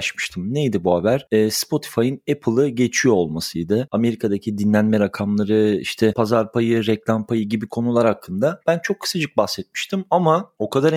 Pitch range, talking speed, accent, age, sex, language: 110-135 Hz, 135 wpm, native, 40-59, male, Turkish